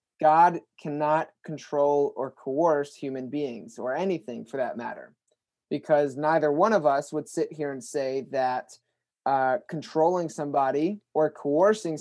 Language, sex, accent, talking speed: English, male, American, 140 wpm